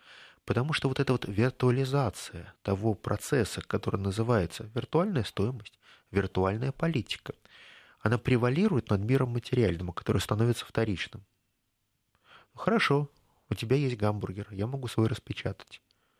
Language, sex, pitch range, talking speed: Russian, male, 100-130 Hz, 120 wpm